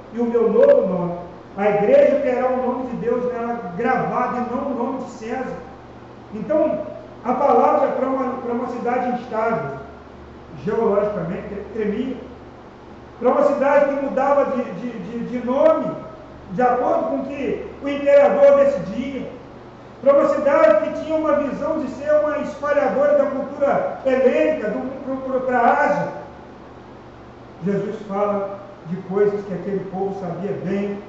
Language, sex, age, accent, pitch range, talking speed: Portuguese, male, 40-59, Brazilian, 210-280 Hz, 145 wpm